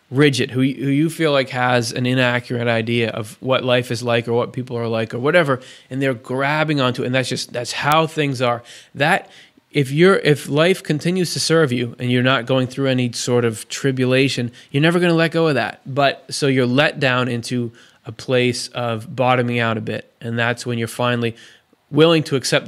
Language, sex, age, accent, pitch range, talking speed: English, male, 20-39, American, 125-150 Hz, 210 wpm